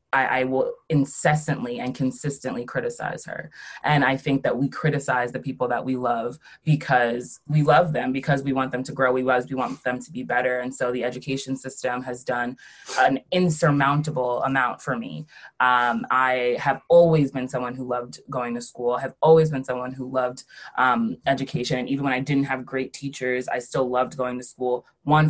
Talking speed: 195 wpm